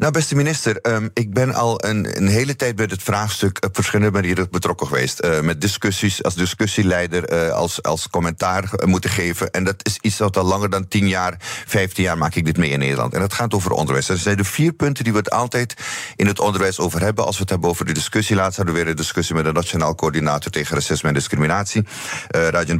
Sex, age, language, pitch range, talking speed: male, 30-49, Dutch, 90-115 Hz, 240 wpm